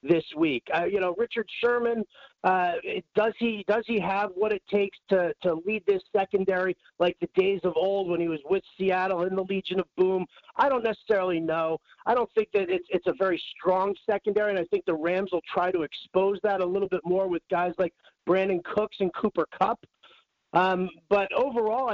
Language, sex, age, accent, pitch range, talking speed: English, male, 40-59, American, 180-220 Hz, 205 wpm